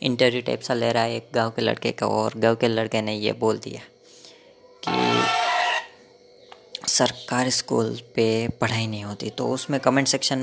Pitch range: 110-130 Hz